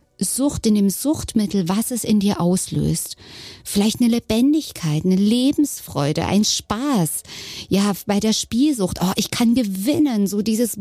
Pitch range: 180-225 Hz